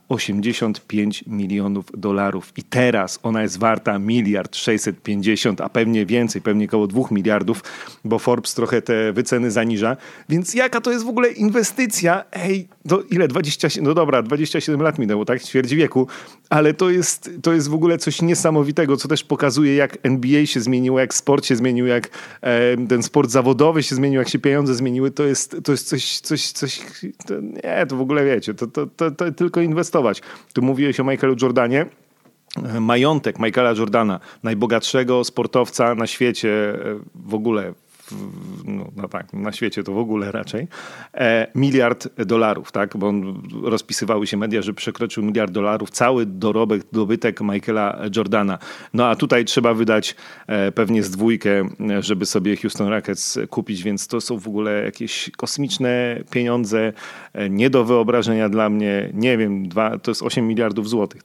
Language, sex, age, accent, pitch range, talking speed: Polish, male, 40-59, native, 110-140 Hz, 160 wpm